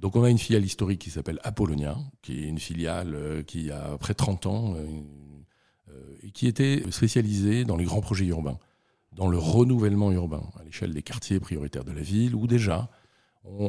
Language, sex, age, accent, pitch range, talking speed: French, male, 50-69, French, 85-110 Hz, 195 wpm